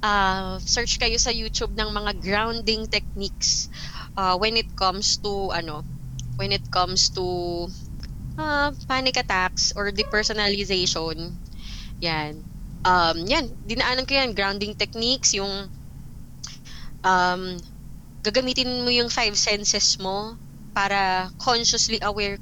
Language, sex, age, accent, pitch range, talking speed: Filipino, female, 20-39, native, 180-230 Hz, 110 wpm